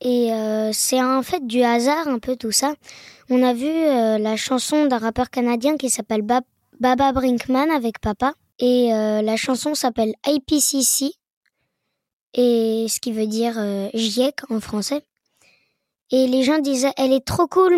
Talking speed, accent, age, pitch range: 170 wpm, French, 20-39, 220-260 Hz